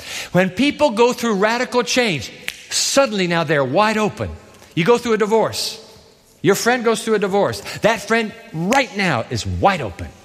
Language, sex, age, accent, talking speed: English, male, 50-69, American, 170 wpm